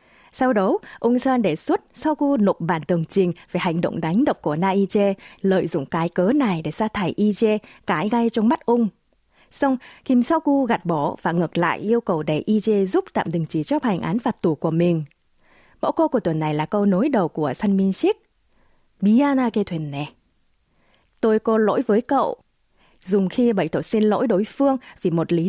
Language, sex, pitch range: Vietnamese, female, 170-240 Hz